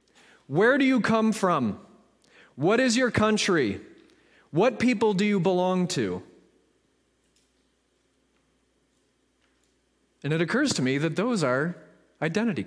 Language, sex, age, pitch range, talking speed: English, male, 30-49, 160-220 Hz, 115 wpm